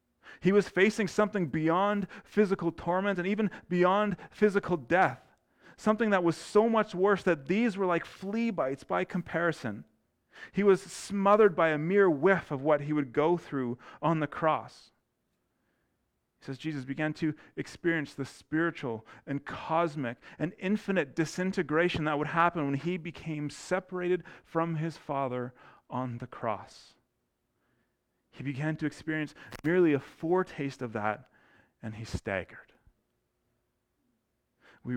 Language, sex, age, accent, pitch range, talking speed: English, male, 30-49, American, 145-185 Hz, 140 wpm